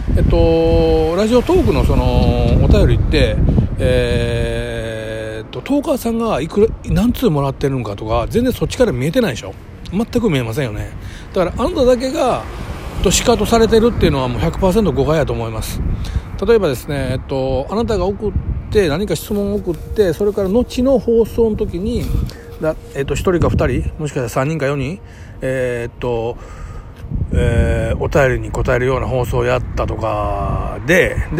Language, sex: Japanese, male